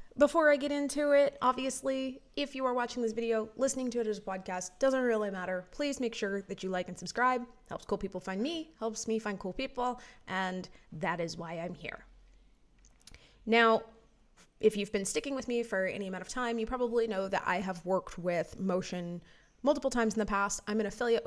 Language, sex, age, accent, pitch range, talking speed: English, female, 20-39, American, 185-230 Hz, 210 wpm